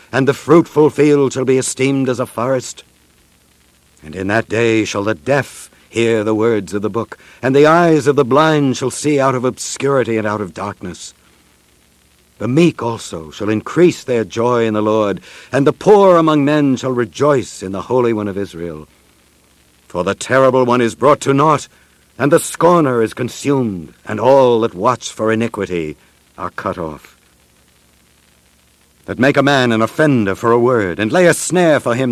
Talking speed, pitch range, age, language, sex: 185 wpm, 80-130 Hz, 60-79, English, male